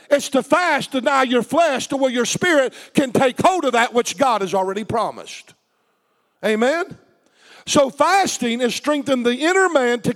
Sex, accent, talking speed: male, American, 170 wpm